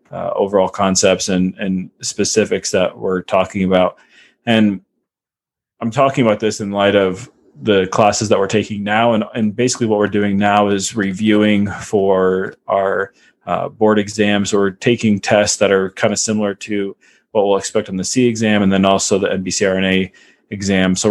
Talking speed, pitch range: 175 wpm, 100-110 Hz